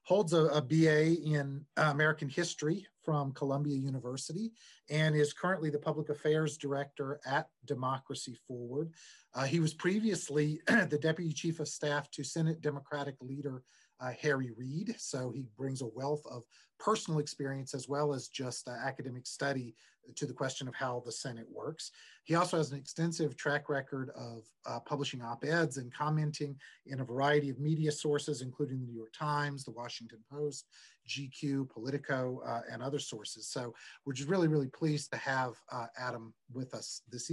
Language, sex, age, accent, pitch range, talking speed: English, male, 30-49, American, 130-155 Hz, 170 wpm